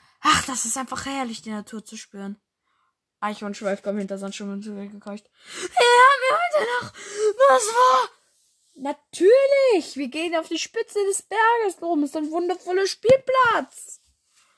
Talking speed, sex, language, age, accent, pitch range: 140 wpm, female, German, 20-39, German, 205-310 Hz